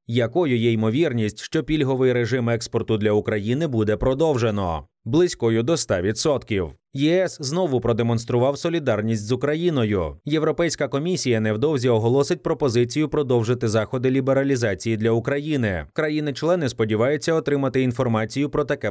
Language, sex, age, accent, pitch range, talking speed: Ukrainian, male, 30-49, native, 115-150 Hz, 115 wpm